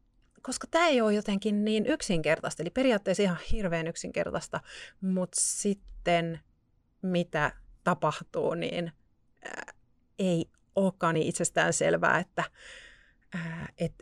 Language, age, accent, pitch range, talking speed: Finnish, 30-49, native, 170-215 Hz, 110 wpm